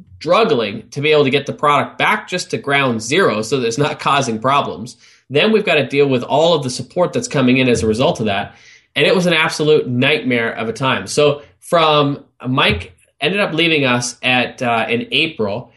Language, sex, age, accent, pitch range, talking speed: English, male, 20-39, American, 115-145 Hz, 215 wpm